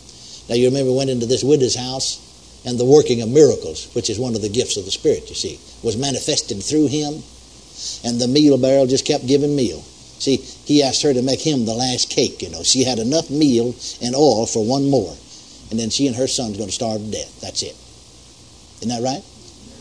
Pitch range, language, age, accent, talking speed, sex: 120-190 Hz, English, 60-79, American, 220 wpm, male